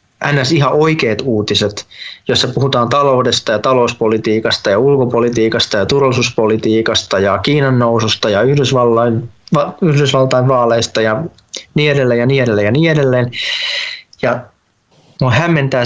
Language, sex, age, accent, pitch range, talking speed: Finnish, male, 20-39, native, 120-145 Hz, 115 wpm